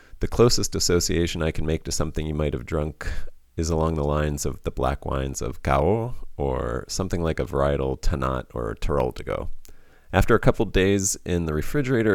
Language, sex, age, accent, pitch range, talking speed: English, male, 30-49, American, 75-95 Hz, 185 wpm